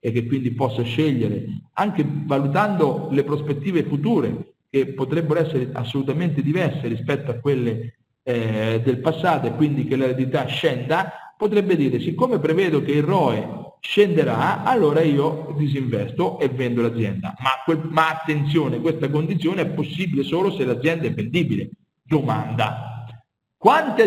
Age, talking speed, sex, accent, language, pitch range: 50-69, 135 wpm, male, native, Italian, 135-185 Hz